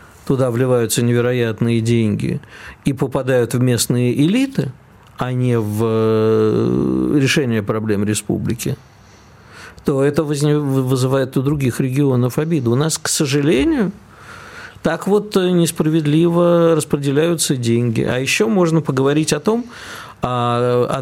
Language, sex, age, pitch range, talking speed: Russian, male, 50-69, 115-150 Hz, 110 wpm